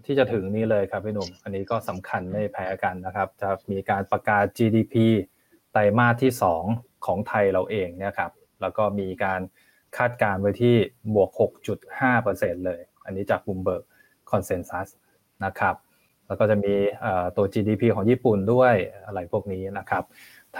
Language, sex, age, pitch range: Thai, male, 20-39, 100-115 Hz